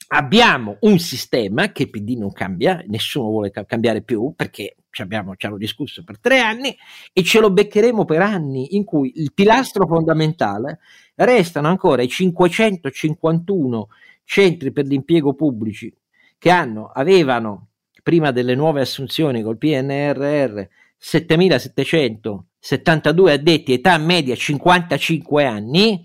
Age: 50-69